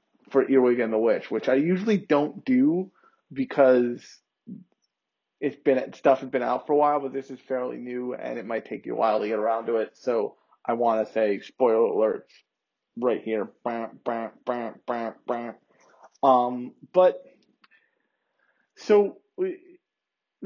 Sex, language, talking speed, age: male, English, 145 wpm, 20-39